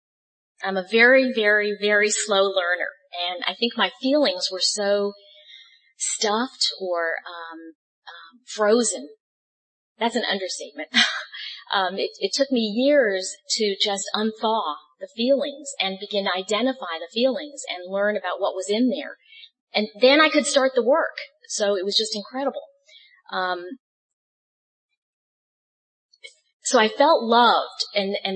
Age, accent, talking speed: 40-59, American, 135 wpm